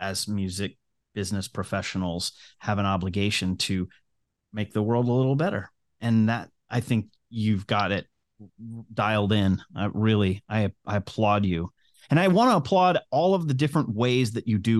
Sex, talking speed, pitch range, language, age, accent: male, 170 wpm, 110-155 Hz, English, 30-49, American